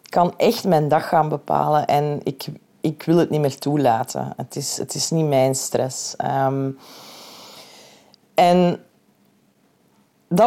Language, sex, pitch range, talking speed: Dutch, female, 150-195 Hz, 130 wpm